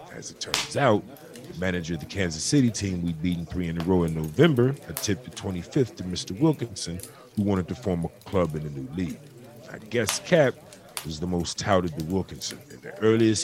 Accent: American